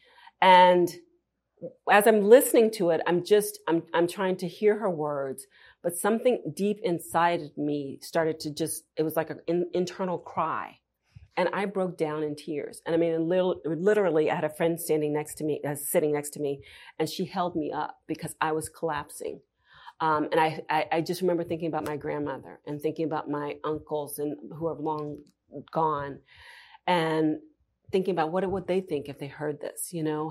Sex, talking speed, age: female, 195 wpm, 40-59